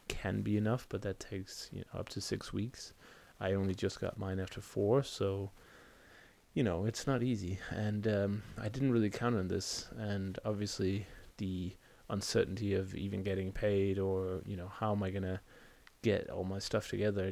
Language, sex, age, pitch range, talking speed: English, male, 20-39, 95-105 Hz, 175 wpm